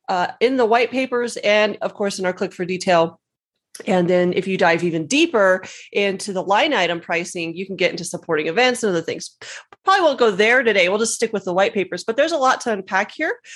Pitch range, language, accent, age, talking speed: 190-255 Hz, English, American, 30-49, 235 wpm